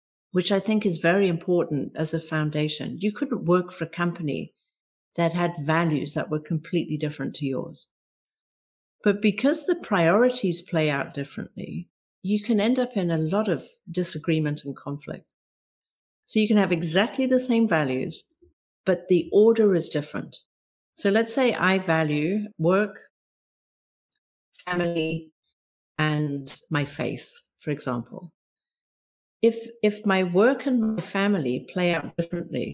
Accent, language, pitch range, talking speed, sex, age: British, English, 155-205 Hz, 140 wpm, female, 50-69